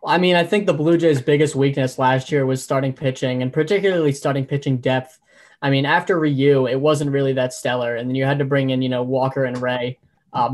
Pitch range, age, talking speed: 130-145 Hz, 10-29, 235 wpm